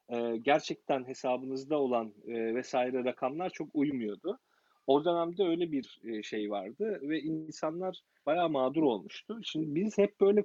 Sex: male